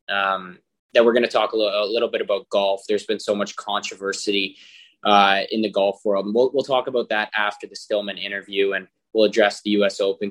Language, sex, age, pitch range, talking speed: English, male, 20-39, 100-125 Hz, 225 wpm